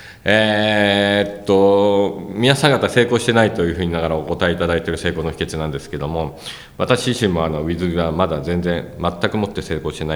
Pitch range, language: 75-100 Hz, Japanese